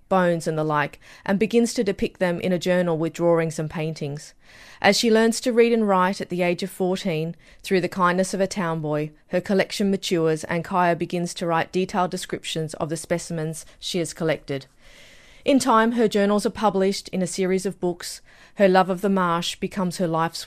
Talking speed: 205 wpm